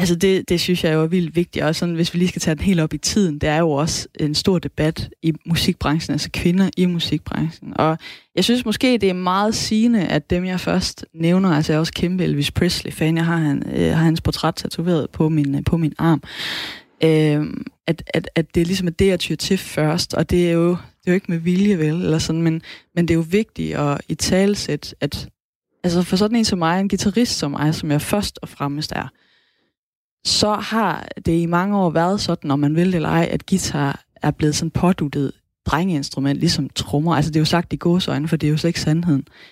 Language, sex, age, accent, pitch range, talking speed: Danish, female, 20-39, native, 150-185 Hz, 230 wpm